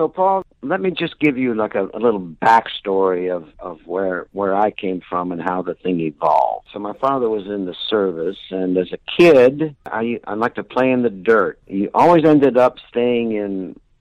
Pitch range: 100-125 Hz